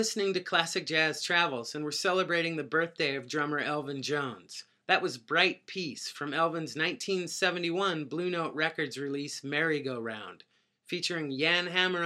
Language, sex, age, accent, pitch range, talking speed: English, male, 30-49, American, 145-185 Hz, 145 wpm